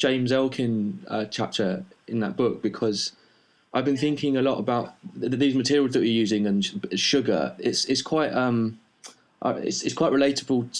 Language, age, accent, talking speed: English, 20-39, British, 170 wpm